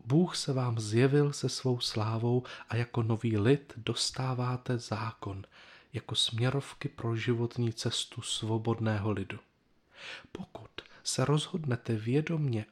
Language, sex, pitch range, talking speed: Czech, male, 115-145 Hz, 115 wpm